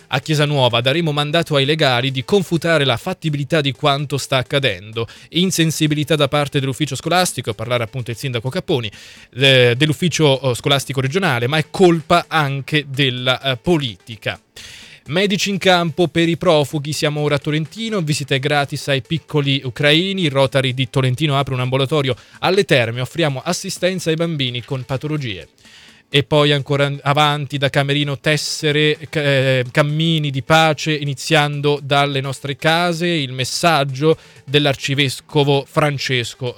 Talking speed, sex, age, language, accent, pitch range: 140 wpm, male, 20-39, Italian, native, 130-160 Hz